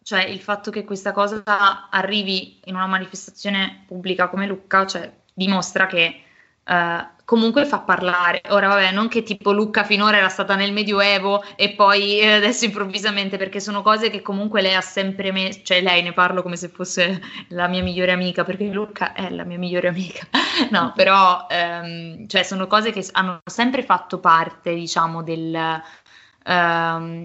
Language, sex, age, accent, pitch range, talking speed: Italian, female, 20-39, native, 180-205 Hz, 170 wpm